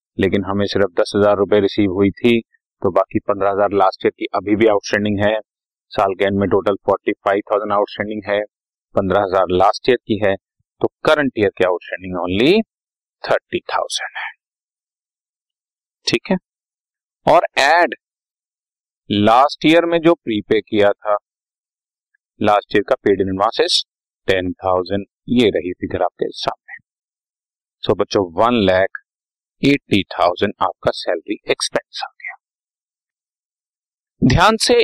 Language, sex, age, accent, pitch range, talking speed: Hindi, male, 30-49, native, 100-140 Hz, 125 wpm